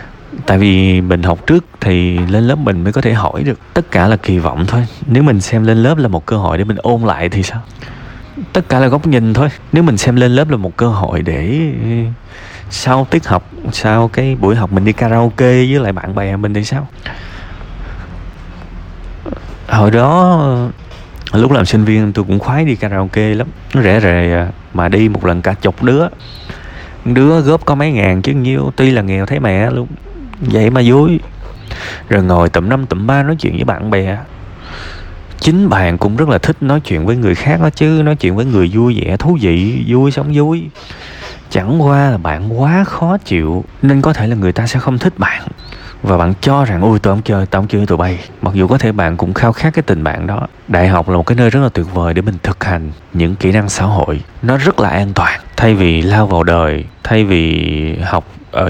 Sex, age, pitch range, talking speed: male, 20-39, 90-125 Hz, 220 wpm